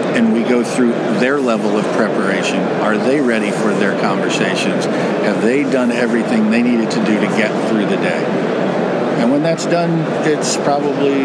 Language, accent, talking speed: English, American, 175 wpm